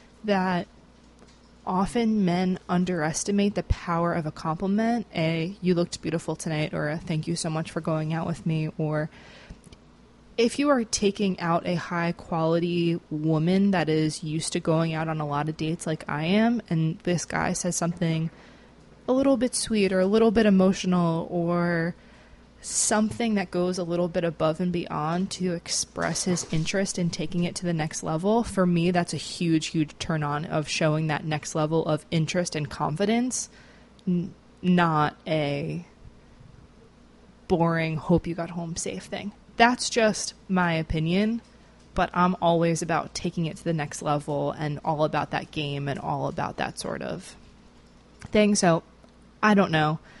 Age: 20-39